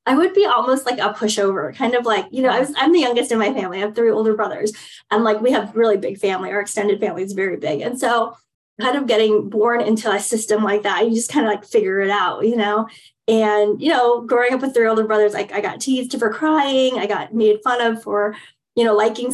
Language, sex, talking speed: English, female, 260 wpm